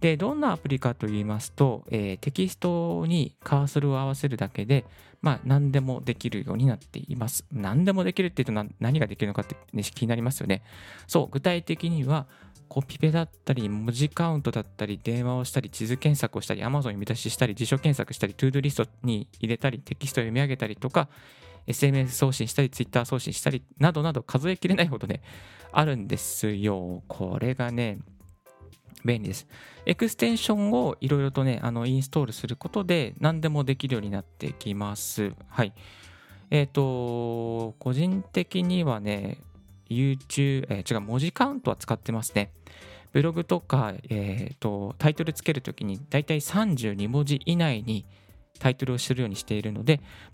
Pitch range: 110-150 Hz